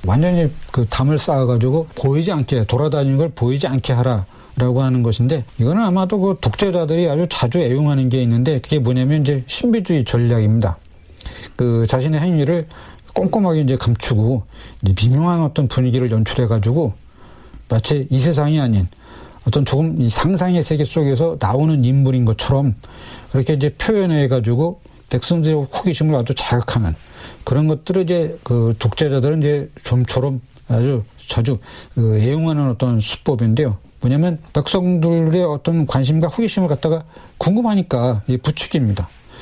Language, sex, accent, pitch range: Korean, male, native, 125-170 Hz